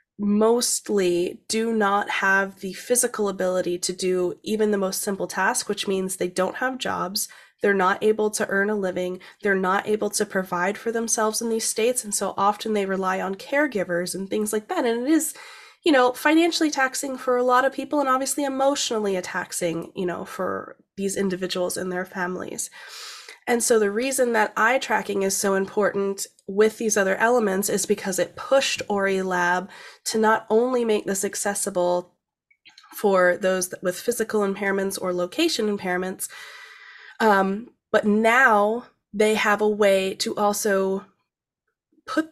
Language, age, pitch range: English, 20-39, 195-250 Hz